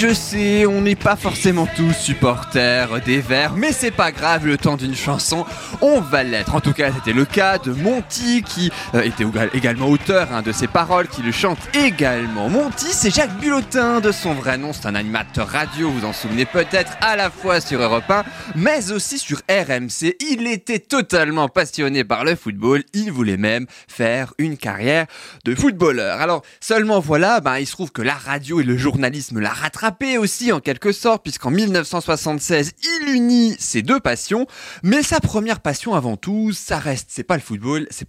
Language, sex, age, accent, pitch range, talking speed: French, male, 20-39, French, 130-205 Hz, 195 wpm